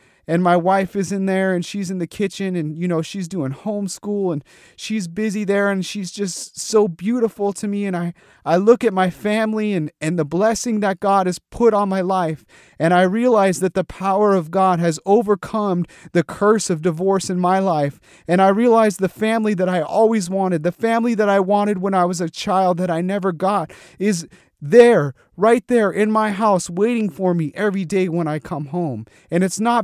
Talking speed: 210 wpm